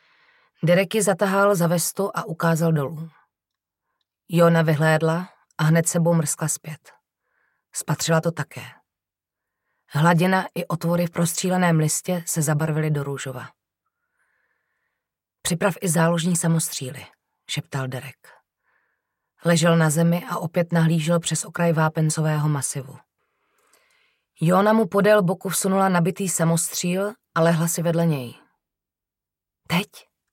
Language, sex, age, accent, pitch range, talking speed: Czech, female, 30-49, native, 150-185 Hz, 115 wpm